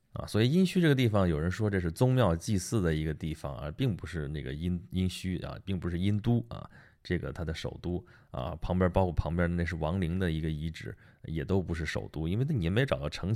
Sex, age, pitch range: male, 20-39, 80-110 Hz